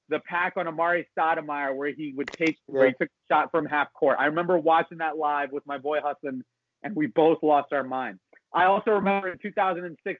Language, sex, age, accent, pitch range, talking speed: English, male, 30-49, American, 140-175 Hz, 220 wpm